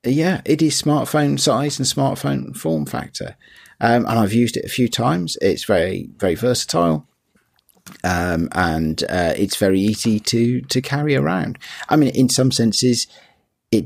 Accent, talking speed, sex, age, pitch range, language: British, 160 wpm, male, 40-59, 85-115 Hz, English